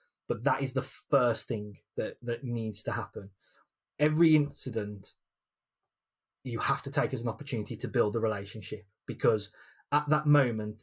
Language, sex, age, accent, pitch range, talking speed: English, male, 20-39, British, 115-140 Hz, 155 wpm